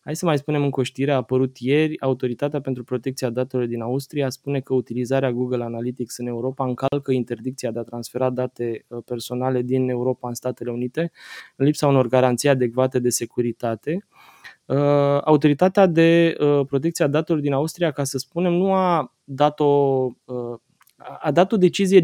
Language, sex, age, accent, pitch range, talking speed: Romanian, male, 20-39, native, 125-145 Hz, 160 wpm